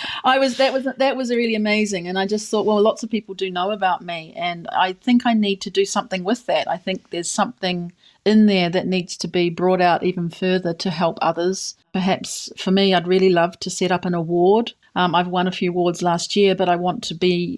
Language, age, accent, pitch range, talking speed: English, 40-59, Australian, 175-200 Hz, 240 wpm